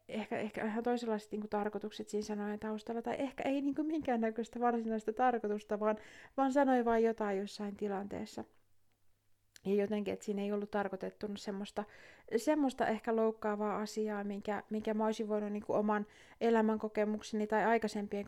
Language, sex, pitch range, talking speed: Finnish, female, 205-235 Hz, 150 wpm